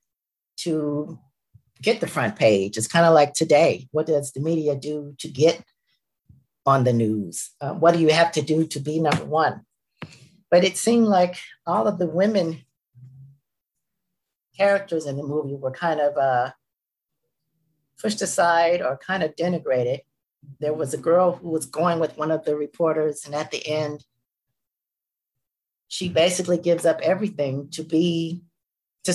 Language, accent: English, American